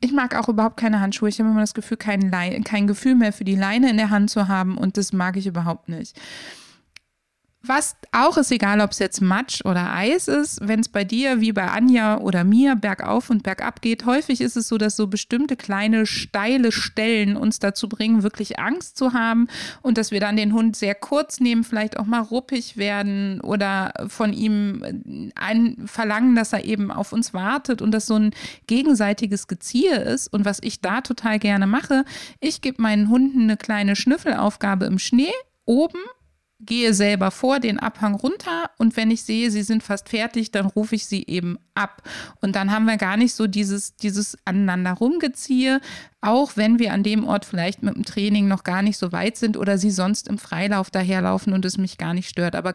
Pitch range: 200-240 Hz